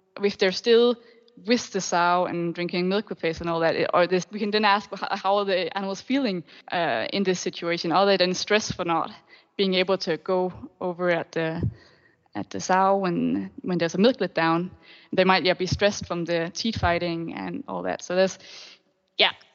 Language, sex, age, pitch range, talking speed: Swedish, female, 20-39, 185-230 Hz, 205 wpm